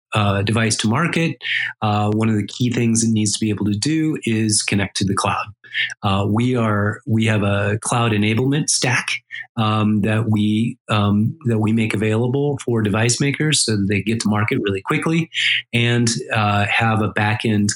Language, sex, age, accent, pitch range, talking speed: English, male, 30-49, American, 100-115 Hz, 185 wpm